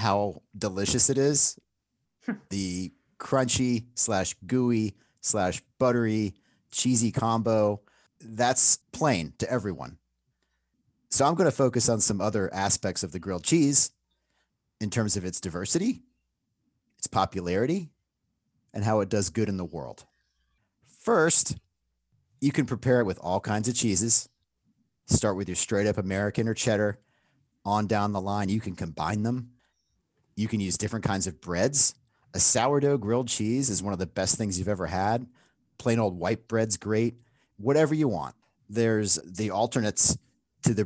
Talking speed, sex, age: 150 wpm, male, 30-49